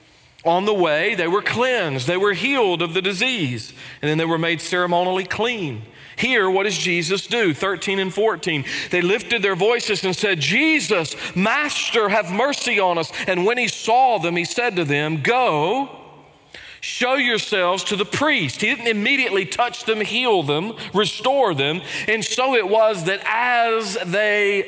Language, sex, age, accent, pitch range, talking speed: English, male, 40-59, American, 175-245 Hz, 170 wpm